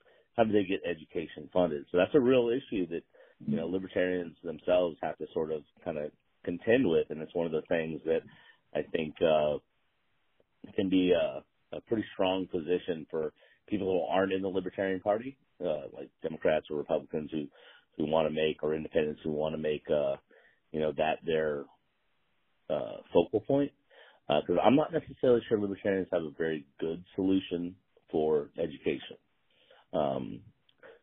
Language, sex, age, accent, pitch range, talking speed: English, male, 40-59, American, 75-95 Hz, 165 wpm